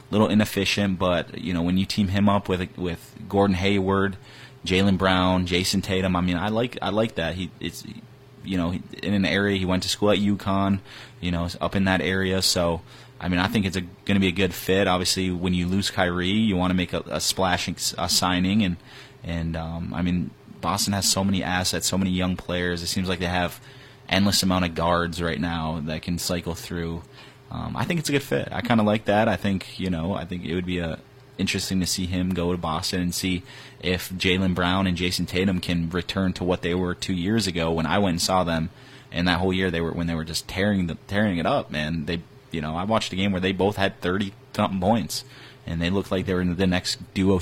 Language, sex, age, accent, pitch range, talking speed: English, male, 20-39, American, 90-100 Hz, 240 wpm